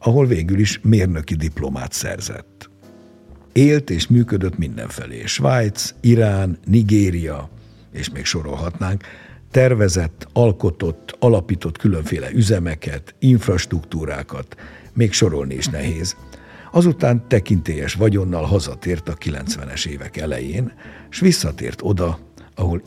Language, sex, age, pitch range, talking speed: Hungarian, male, 60-79, 80-110 Hz, 100 wpm